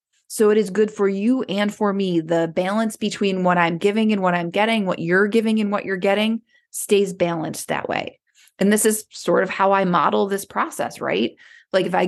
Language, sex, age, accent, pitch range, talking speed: English, female, 20-39, American, 180-225 Hz, 220 wpm